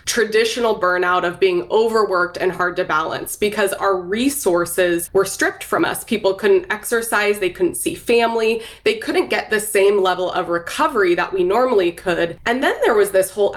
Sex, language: female, English